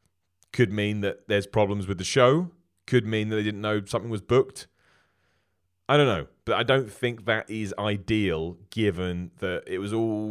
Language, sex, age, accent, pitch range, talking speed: English, male, 30-49, British, 90-120 Hz, 185 wpm